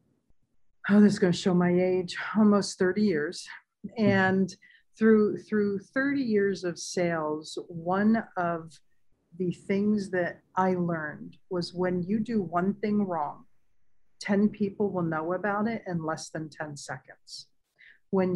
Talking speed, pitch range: 145 wpm, 170-205 Hz